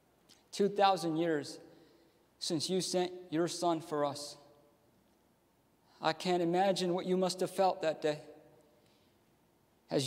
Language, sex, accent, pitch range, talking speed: English, male, American, 165-200 Hz, 120 wpm